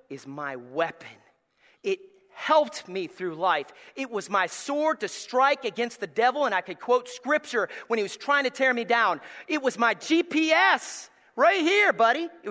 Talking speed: 180 wpm